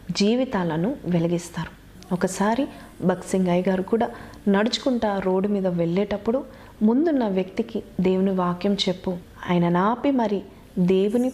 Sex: female